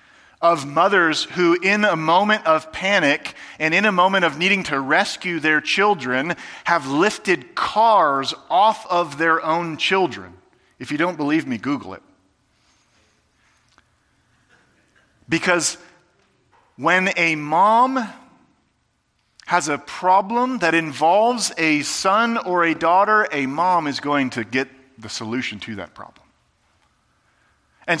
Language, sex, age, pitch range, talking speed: English, male, 40-59, 150-205 Hz, 125 wpm